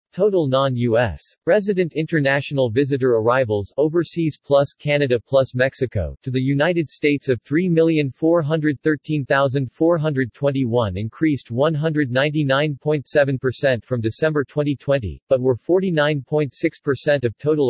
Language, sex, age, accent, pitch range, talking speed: English, male, 50-69, American, 125-155 Hz, 90 wpm